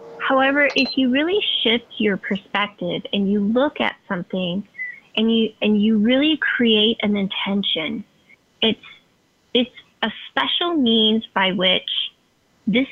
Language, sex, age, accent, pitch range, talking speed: English, female, 20-39, American, 190-235 Hz, 130 wpm